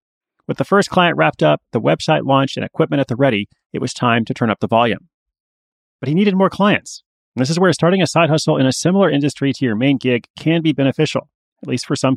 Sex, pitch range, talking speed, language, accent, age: male, 115-155 Hz, 245 wpm, English, American, 30-49